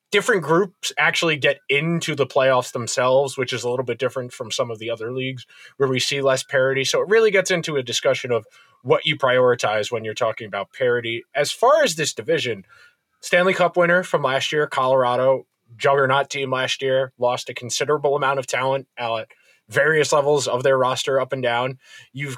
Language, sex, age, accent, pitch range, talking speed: English, male, 20-39, American, 125-175 Hz, 195 wpm